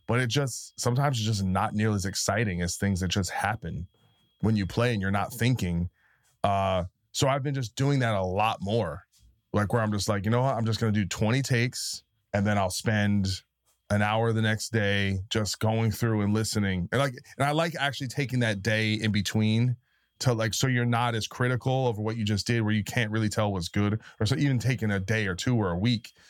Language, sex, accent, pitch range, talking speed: English, male, American, 100-125 Hz, 230 wpm